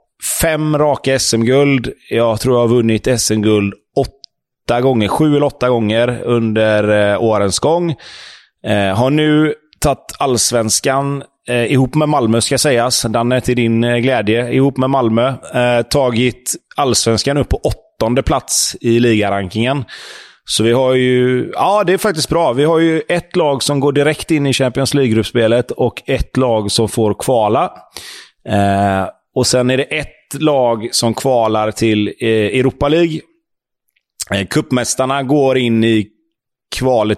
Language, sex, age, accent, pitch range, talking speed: English, male, 30-49, Swedish, 110-140 Hz, 145 wpm